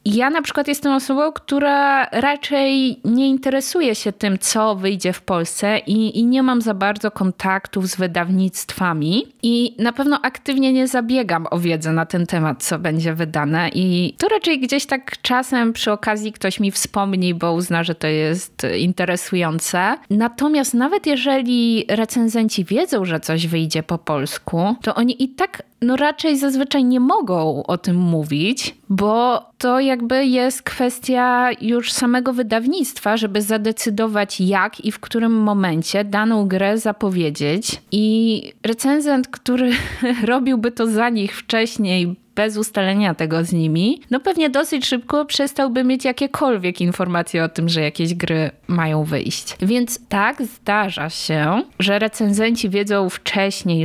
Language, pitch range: Polish, 180-250 Hz